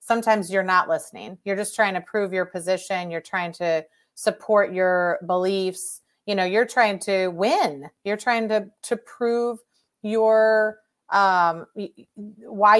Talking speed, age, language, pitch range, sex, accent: 145 wpm, 30-49, English, 175-215 Hz, female, American